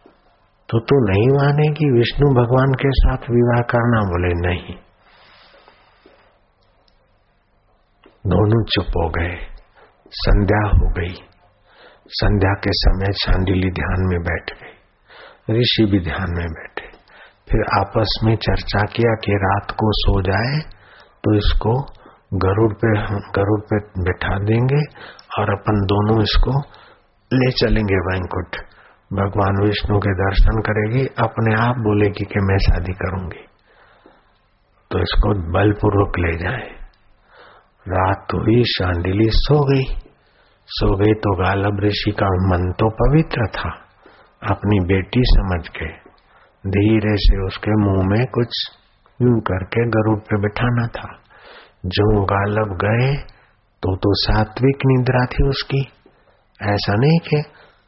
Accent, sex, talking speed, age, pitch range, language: native, male, 120 wpm, 50-69, 95-115 Hz, Hindi